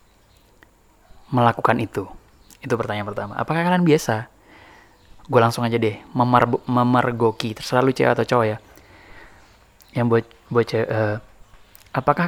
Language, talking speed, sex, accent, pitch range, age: Indonesian, 120 wpm, male, native, 110-130 Hz, 20-39